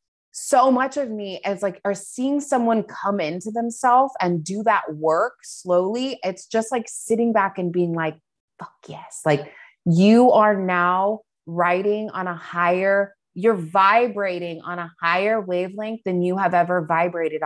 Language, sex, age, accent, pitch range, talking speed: English, female, 30-49, American, 165-220 Hz, 160 wpm